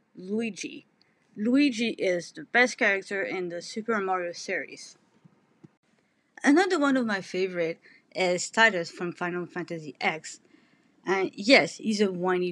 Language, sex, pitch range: English, female, 175-235 Hz